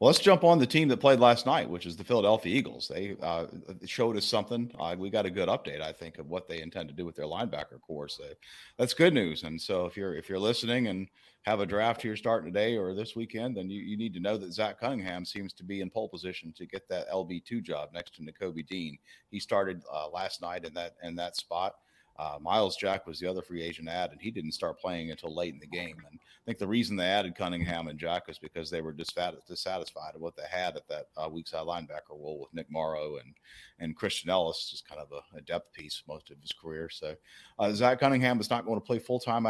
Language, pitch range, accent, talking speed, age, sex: English, 85-115 Hz, American, 255 wpm, 40-59, male